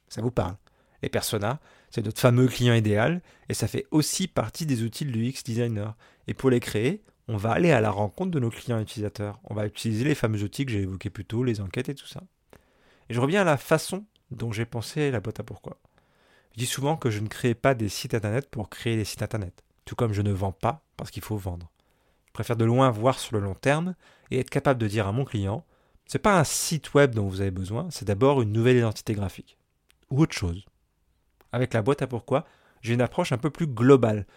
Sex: male